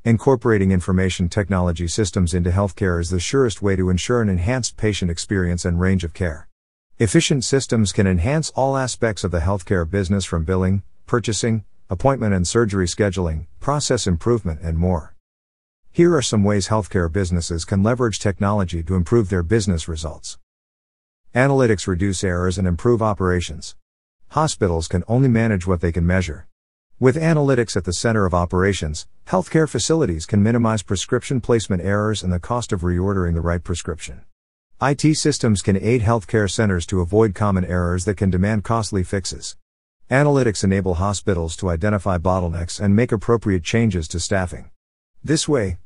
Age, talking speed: 50-69, 155 wpm